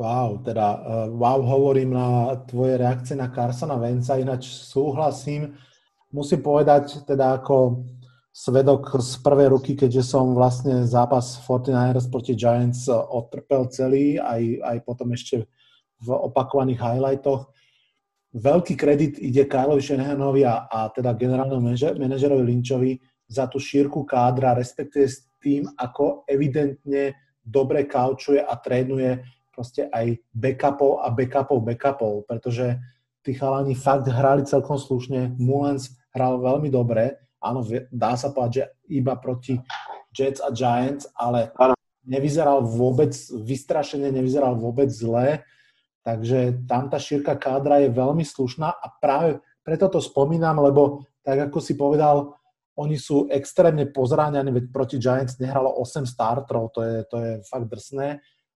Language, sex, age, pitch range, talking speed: Slovak, male, 30-49, 125-140 Hz, 130 wpm